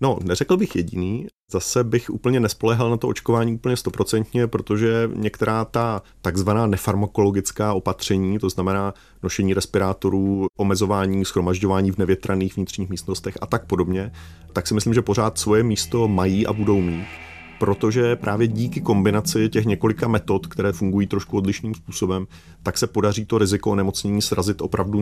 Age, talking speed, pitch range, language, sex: 30-49, 150 wpm, 95-115 Hz, Czech, male